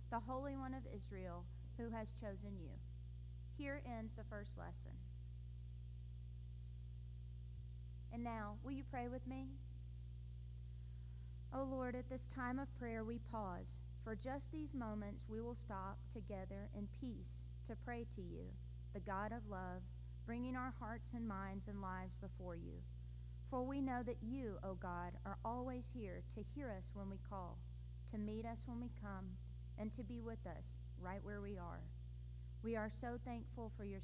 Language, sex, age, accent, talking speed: English, female, 40-59, American, 165 wpm